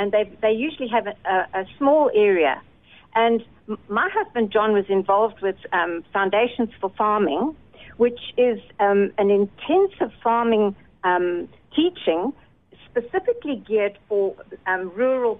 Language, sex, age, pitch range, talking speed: English, female, 60-79, 190-245 Hz, 135 wpm